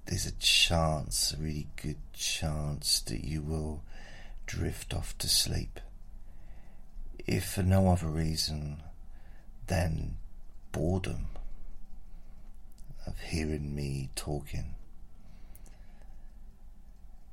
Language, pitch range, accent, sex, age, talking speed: English, 75-95 Hz, British, male, 40-59, 85 wpm